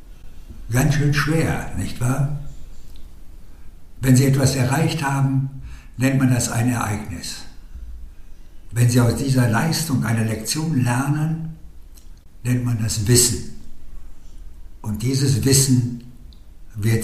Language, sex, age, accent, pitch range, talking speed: German, male, 60-79, German, 80-130 Hz, 110 wpm